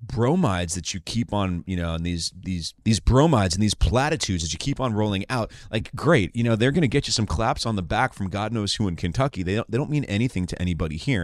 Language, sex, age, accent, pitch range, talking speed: English, male, 30-49, American, 85-105 Hz, 265 wpm